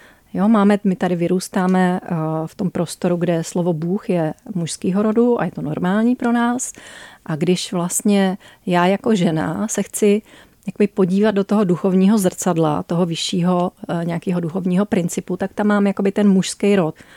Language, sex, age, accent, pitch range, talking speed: Czech, female, 30-49, native, 175-210 Hz, 155 wpm